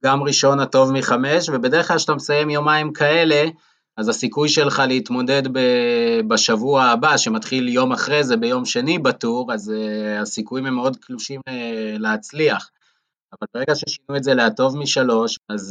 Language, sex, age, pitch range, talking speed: Hebrew, male, 20-39, 110-150 Hz, 155 wpm